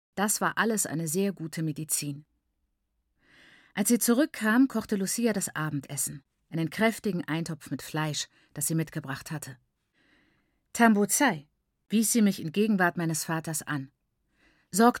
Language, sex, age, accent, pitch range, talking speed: German, female, 50-69, German, 155-220 Hz, 130 wpm